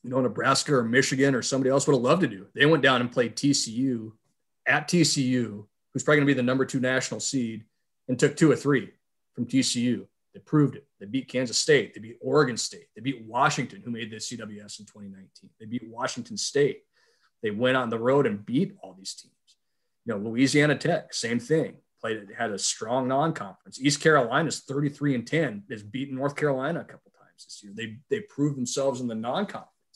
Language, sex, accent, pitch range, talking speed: English, male, American, 115-140 Hz, 210 wpm